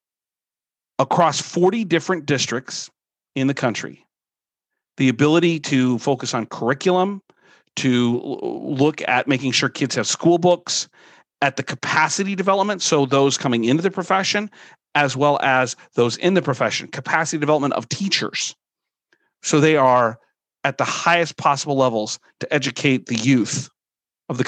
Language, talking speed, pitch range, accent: English, 140 wpm, 125-155 Hz, American